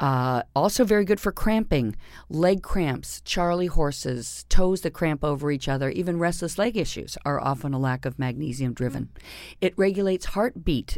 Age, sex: 50-69, female